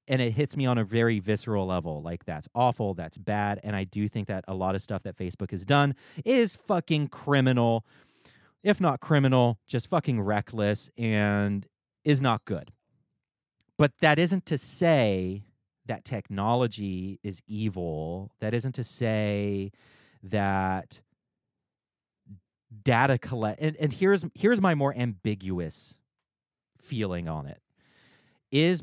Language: English